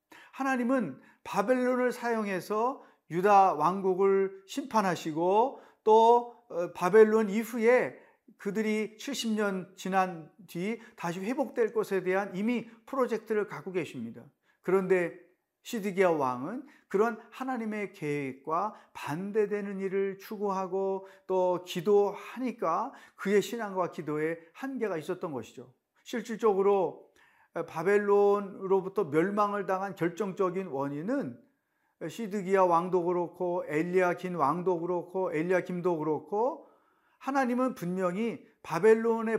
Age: 40-59